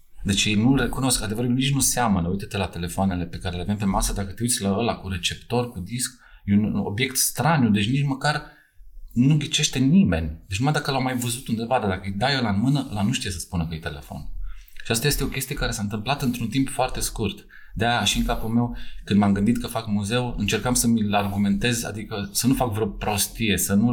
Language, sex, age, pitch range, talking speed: Romanian, male, 30-49, 100-120 Hz, 230 wpm